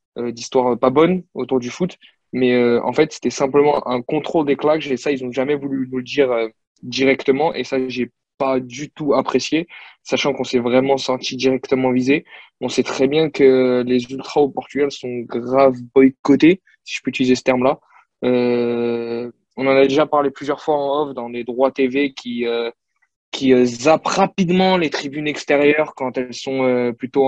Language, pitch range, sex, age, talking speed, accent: French, 125-140 Hz, male, 20-39, 190 wpm, French